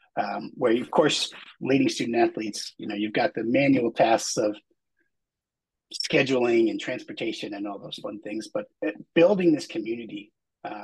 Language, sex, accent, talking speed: English, male, American, 160 wpm